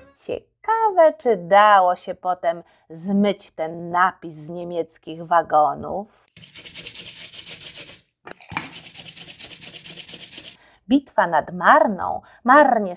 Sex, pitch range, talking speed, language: female, 185-300 Hz, 65 wpm, Polish